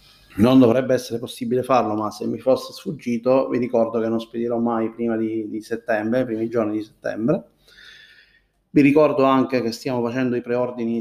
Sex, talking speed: male, 180 wpm